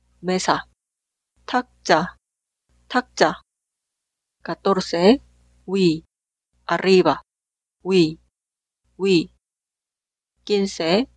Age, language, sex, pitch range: 40-59, Korean, female, 160-195 Hz